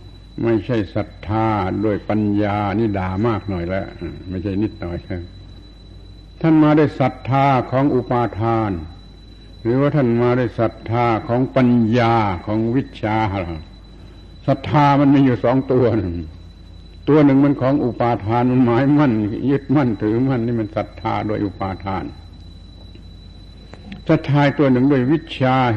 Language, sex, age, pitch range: Thai, male, 70-89, 95-125 Hz